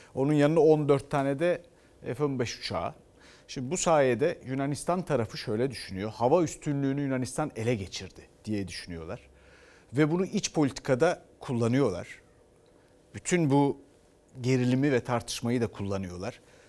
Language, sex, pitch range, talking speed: Turkish, male, 110-150 Hz, 120 wpm